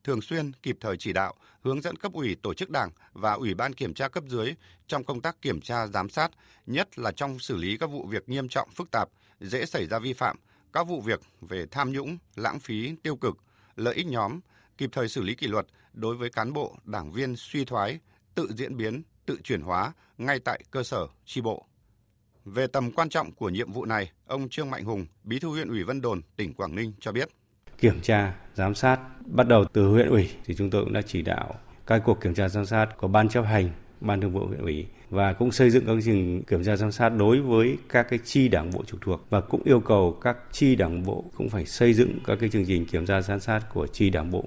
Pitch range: 100-125 Hz